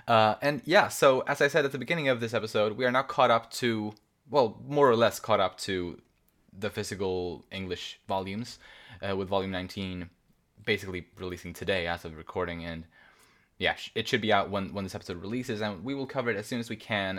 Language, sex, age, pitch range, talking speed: English, male, 20-39, 90-105 Hz, 215 wpm